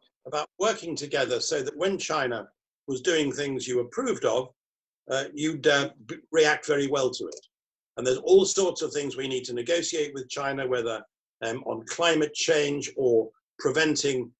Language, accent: English, British